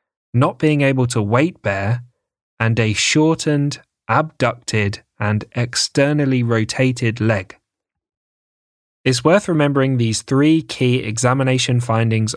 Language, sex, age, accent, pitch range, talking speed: English, male, 10-29, British, 110-140 Hz, 105 wpm